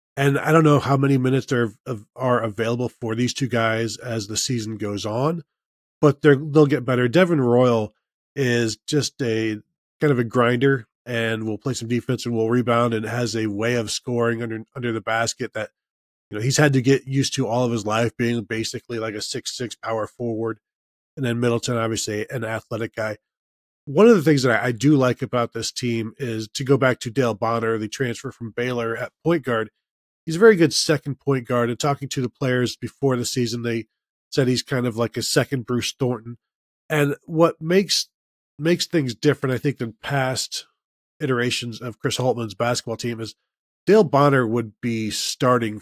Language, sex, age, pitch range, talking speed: English, male, 20-39, 115-140 Hz, 200 wpm